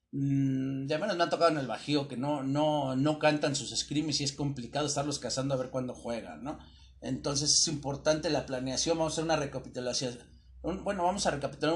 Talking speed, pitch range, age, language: 200 wpm, 135-160 Hz, 40-59, Spanish